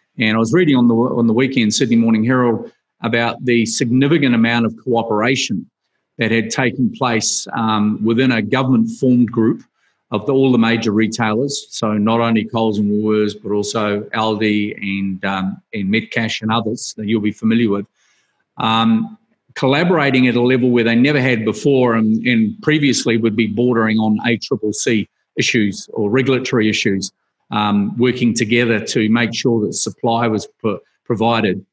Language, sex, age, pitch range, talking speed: English, male, 40-59, 110-130 Hz, 160 wpm